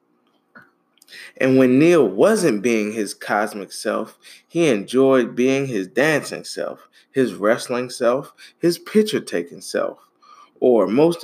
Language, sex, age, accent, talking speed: English, male, 20-39, American, 125 wpm